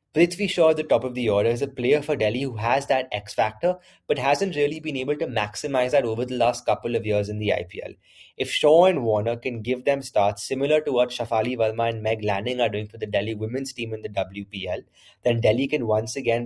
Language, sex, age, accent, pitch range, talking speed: English, male, 20-39, Indian, 110-130 Hz, 235 wpm